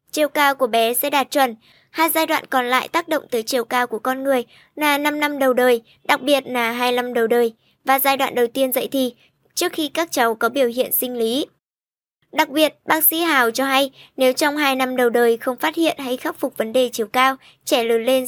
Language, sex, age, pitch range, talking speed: Vietnamese, male, 20-39, 245-295 Hz, 240 wpm